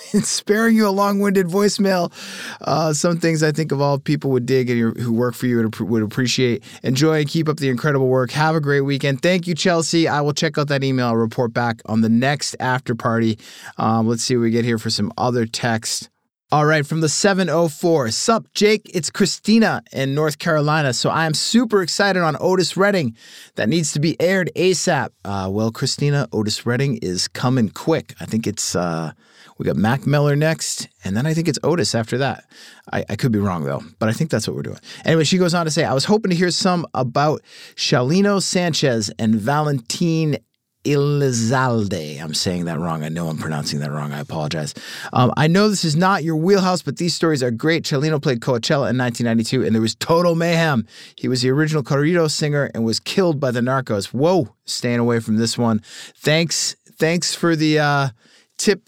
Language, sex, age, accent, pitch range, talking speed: English, male, 30-49, American, 115-165 Hz, 210 wpm